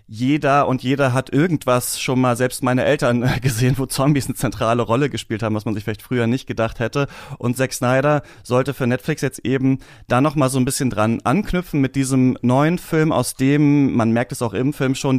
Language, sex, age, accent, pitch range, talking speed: German, male, 30-49, German, 120-140 Hz, 215 wpm